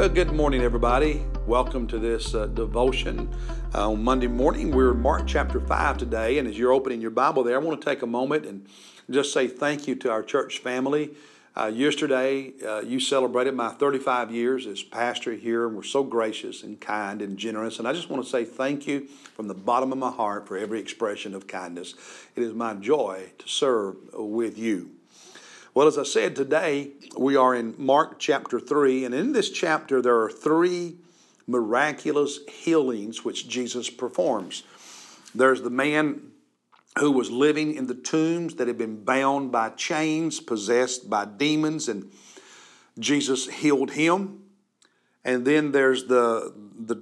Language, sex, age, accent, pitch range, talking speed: English, male, 50-69, American, 115-145 Hz, 175 wpm